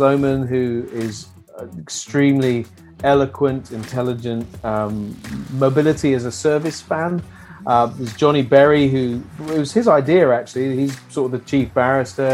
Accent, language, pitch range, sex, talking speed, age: British, English, 120-145 Hz, male, 140 wpm, 40-59